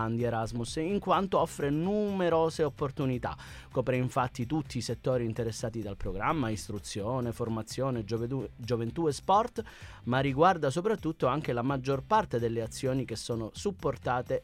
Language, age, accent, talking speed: Italian, 30-49, native, 135 wpm